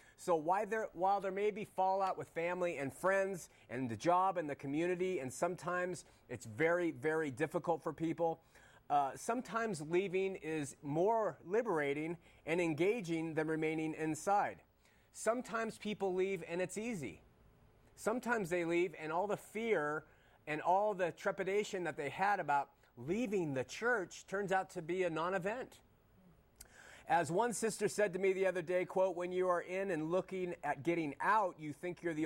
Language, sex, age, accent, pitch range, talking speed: English, male, 30-49, American, 155-195 Hz, 165 wpm